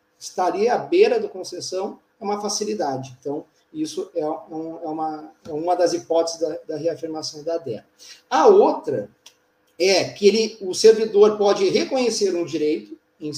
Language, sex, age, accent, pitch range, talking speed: Portuguese, male, 40-59, Brazilian, 165-230 Hz, 150 wpm